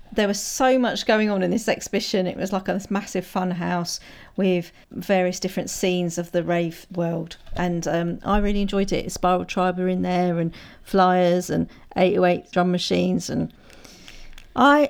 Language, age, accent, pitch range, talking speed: English, 40-59, British, 175-200 Hz, 170 wpm